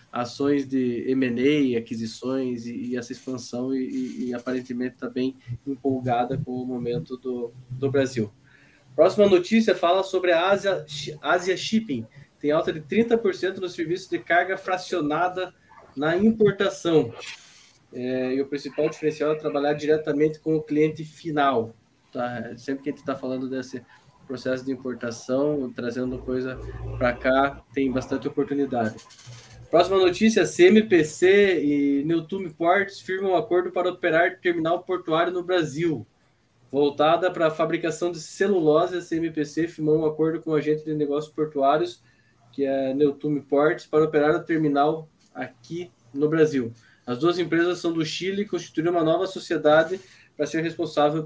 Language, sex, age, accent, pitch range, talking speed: Portuguese, male, 20-39, Brazilian, 130-170 Hz, 145 wpm